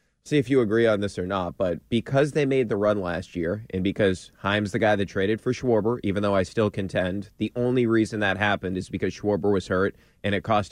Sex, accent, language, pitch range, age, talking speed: male, American, English, 100-125 Hz, 30-49, 240 wpm